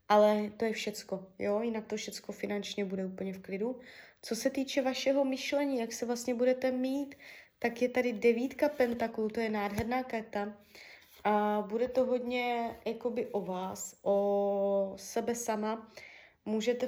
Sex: female